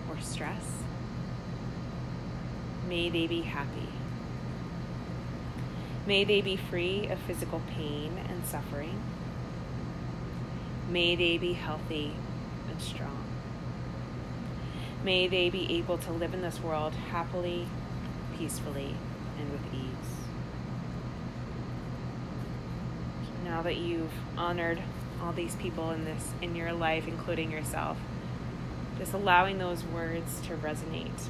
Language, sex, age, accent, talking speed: English, female, 20-39, American, 105 wpm